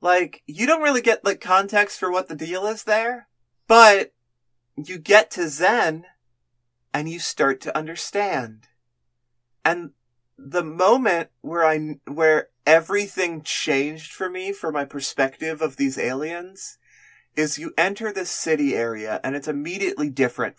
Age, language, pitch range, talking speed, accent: 30-49, English, 125-160 Hz, 145 wpm, American